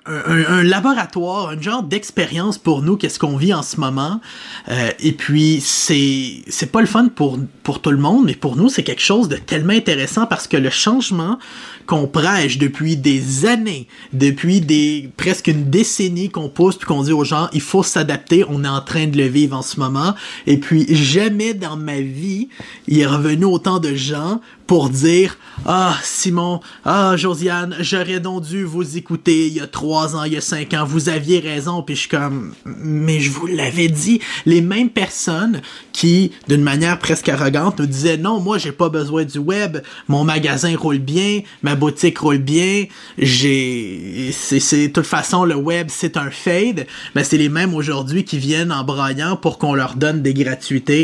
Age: 30-49